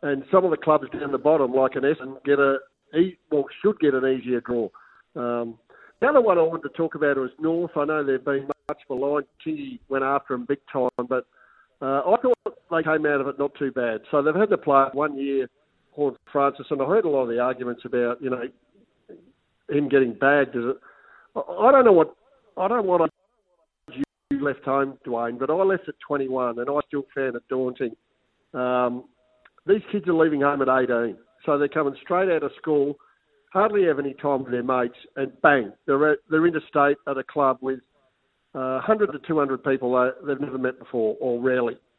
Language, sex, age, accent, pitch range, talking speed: English, male, 50-69, Australian, 130-155 Hz, 205 wpm